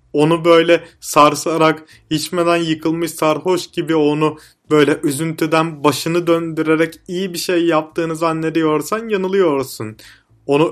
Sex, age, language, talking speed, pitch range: male, 30-49, Turkish, 105 wpm, 140-175 Hz